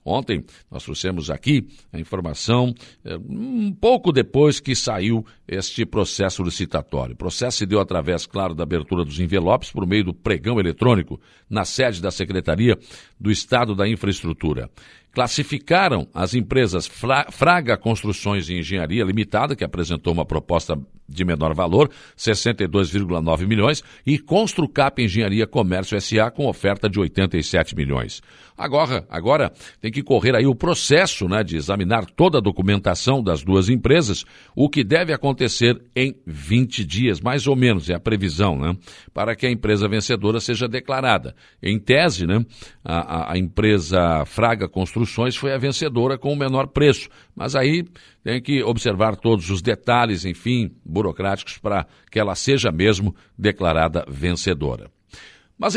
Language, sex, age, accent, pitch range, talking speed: Portuguese, male, 60-79, Brazilian, 90-125 Hz, 145 wpm